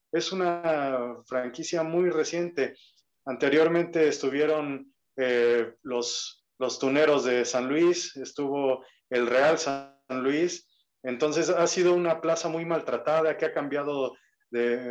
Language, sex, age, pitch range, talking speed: Spanish, male, 30-49, 125-160 Hz, 120 wpm